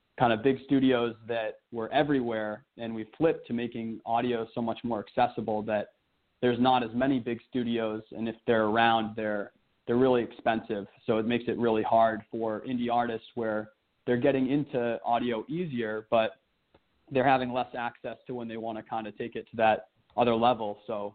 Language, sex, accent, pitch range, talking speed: English, male, American, 110-125 Hz, 185 wpm